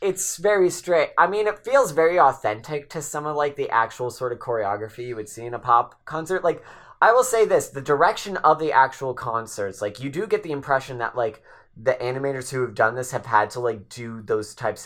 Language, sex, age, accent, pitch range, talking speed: English, male, 20-39, American, 110-145 Hz, 230 wpm